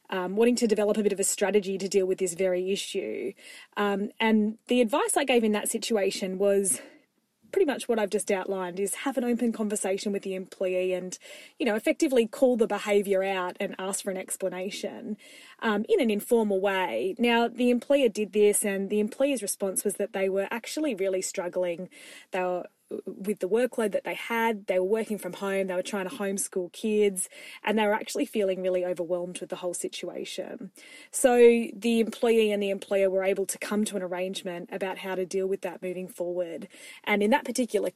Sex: female